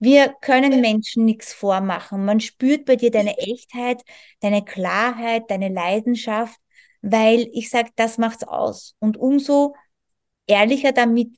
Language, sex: German, female